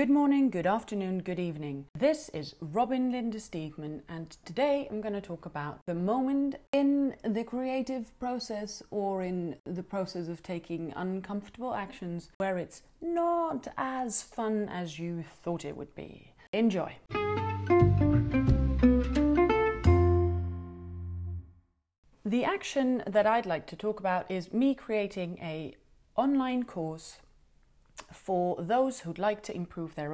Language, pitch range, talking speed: English, 160-230 Hz, 130 wpm